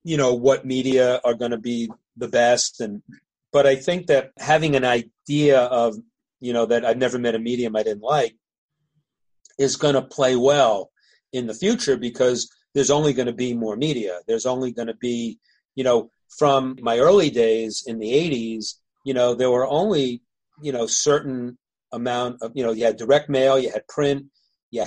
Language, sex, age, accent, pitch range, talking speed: English, male, 40-59, American, 120-140 Hz, 195 wpm